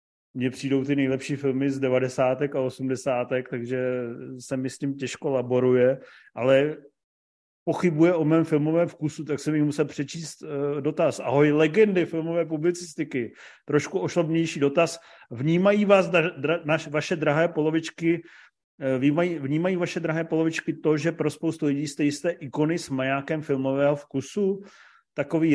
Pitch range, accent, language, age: 130-160 Hz, native, Czech, 40-59